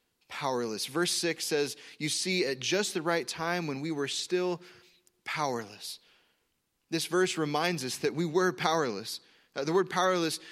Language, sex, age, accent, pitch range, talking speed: English, male, 20-39, American, 135-170 Hz, 160 wpm